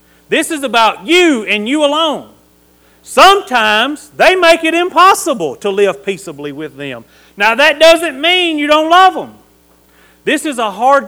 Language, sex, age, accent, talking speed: English, male, 40-59, American, 155 wpm